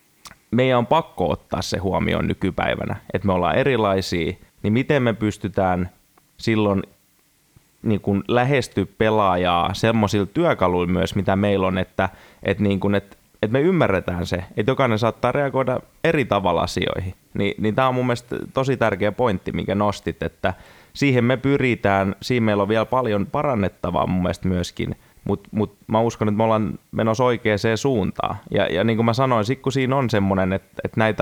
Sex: male